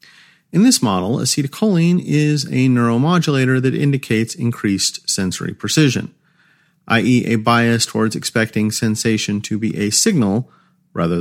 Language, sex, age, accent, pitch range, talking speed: English, male, 40-59, American, 115-165 Hz, 125 wpm